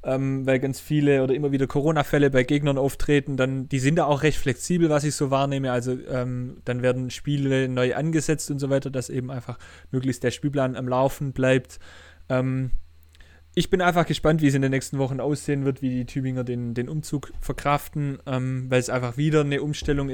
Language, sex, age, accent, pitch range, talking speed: German, male, 20-39, German, 125-140 Hz, 200 wpm